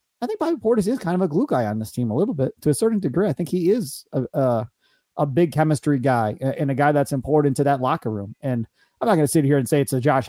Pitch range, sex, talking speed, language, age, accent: 120-155 Hz, male, 295 wpm, English, 30-49, American